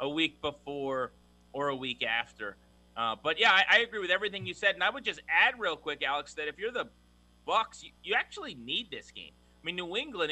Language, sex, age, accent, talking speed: English, male, 30-49, American, 235 wpm